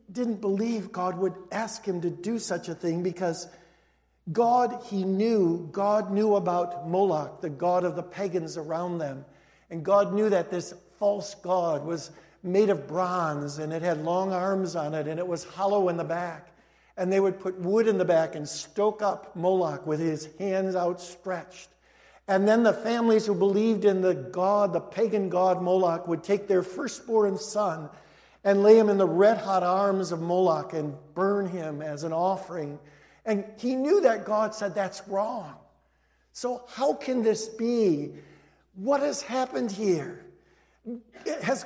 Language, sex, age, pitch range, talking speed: English, male, 60-79, 180-220 Hz, 170 wpm